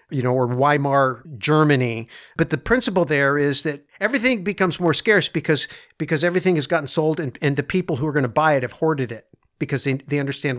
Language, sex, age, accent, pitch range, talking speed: English, male, 50-69, American, 135-170 Hz, 215 wpm